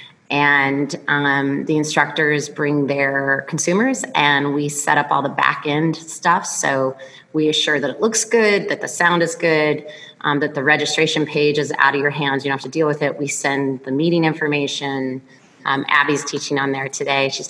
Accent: American